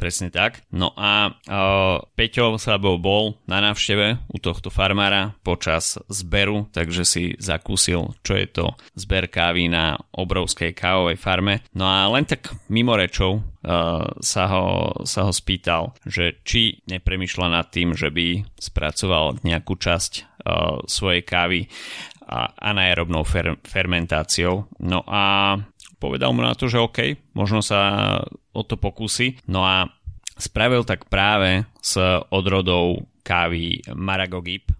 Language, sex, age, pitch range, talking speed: Slovak, male, 30-49, 85-100 Hz, 135 wpm